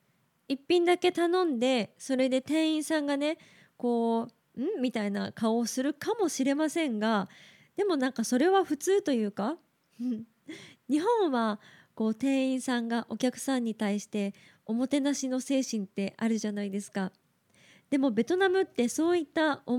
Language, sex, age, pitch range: Japanese, female, 20-39, 215-290 Hz